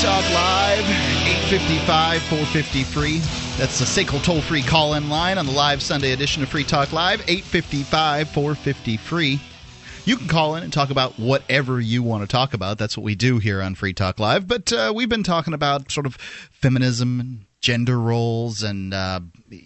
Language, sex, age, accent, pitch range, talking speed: English, male, 30-49, American, 110-145 Hz, 165 wpm